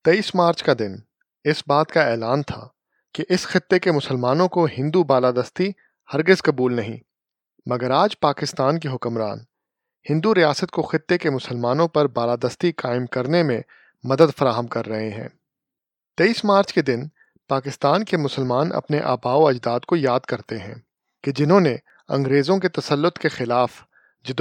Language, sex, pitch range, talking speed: Urdu, male, 130-180 Hz, 155 wpm